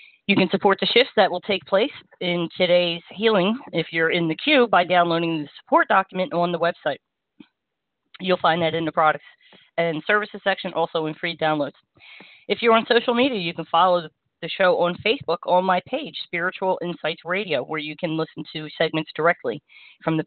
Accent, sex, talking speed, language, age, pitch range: American, female, 190 wpm, English, 30-49, 170-210 Hz